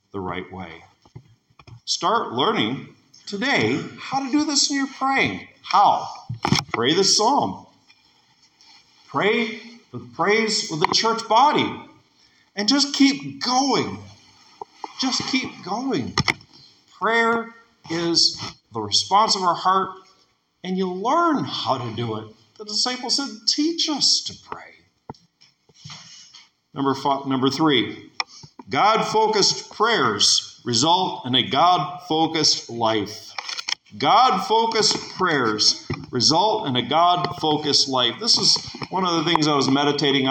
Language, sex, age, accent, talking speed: English, male, 50-69, American, 120 wpm